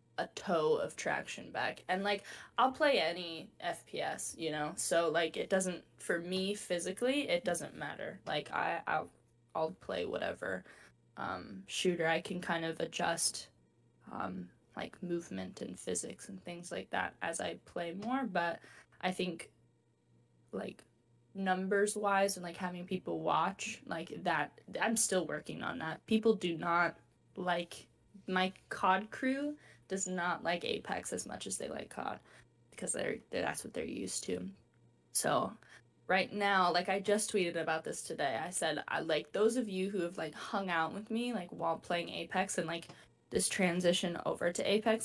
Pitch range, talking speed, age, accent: 165-200 Hz, 165 wpm, 10-29, American